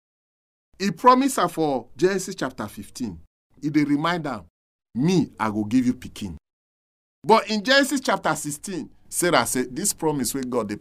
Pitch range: 105-165 Hz